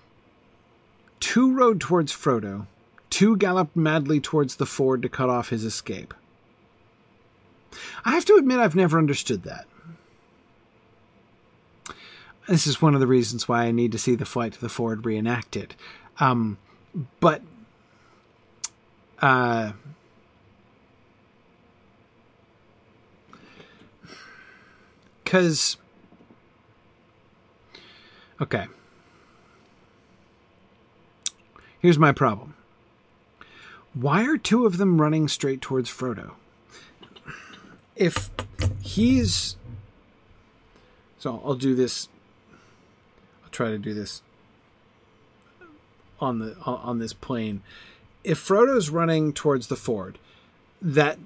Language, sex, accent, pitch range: English, male, American, 110-155 Hz